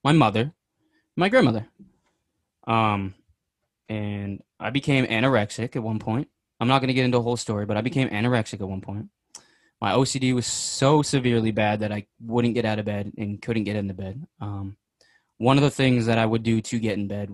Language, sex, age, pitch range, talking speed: English, male, 20-39, 105-130 Hz, 205 wpm